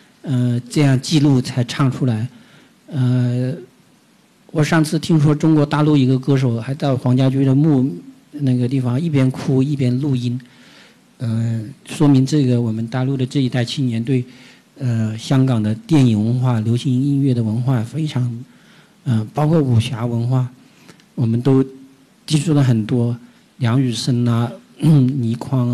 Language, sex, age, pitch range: Chinese, male, 50-69, 120-145 Hz